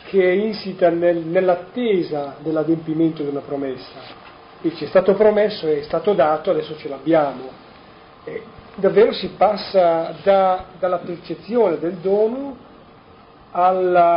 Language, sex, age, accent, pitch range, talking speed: Italian, male, 40-59, native, 155-205 Hz, 120 wpm